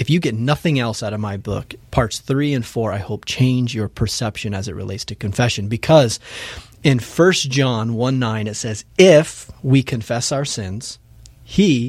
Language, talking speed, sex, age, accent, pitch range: English, 185 wpm, male, 30-49, American, 110-140 Hz